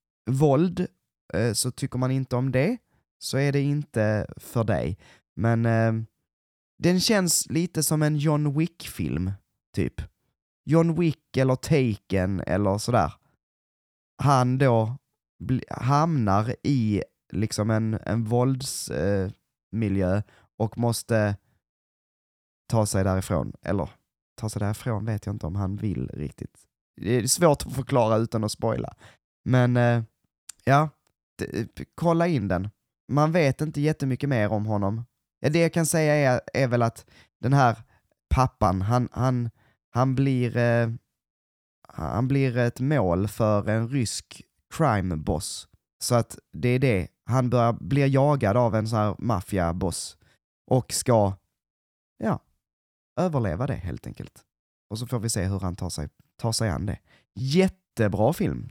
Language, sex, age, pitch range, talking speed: Swedish, male, 20-39, 100-135 Hz, 140 wpm